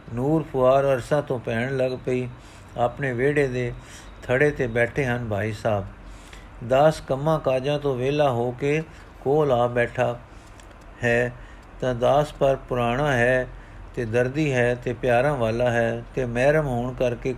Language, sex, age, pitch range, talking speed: Punjabi, male, 50-69, 120-145 Hz, 145 wpm